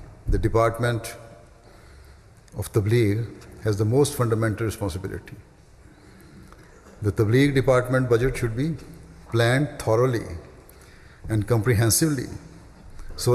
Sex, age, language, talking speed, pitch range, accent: male, 60-79, English, 90 wpm, 105-130 Hz, Indian